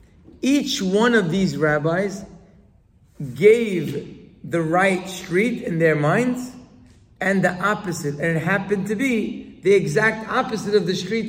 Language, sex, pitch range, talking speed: English, male, 160-215 Hz, 140 wpm